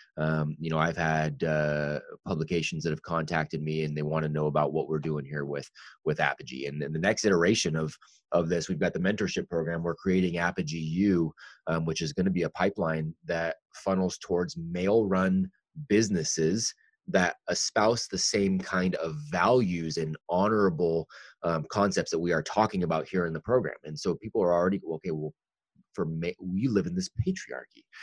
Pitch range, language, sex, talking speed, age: 80-95 Hz, English, male, 190 wpm, 30-49